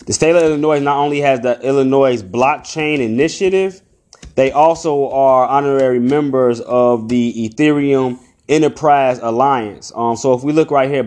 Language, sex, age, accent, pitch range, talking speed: English, male, 20-39, American, 110-135 Hz, 150 wpm